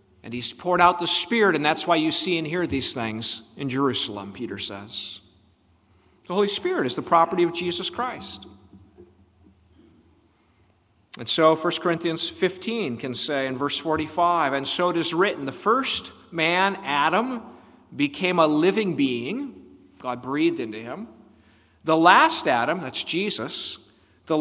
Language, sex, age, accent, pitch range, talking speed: English, male, 50-69, American, 115-190 Hz, 150 wpm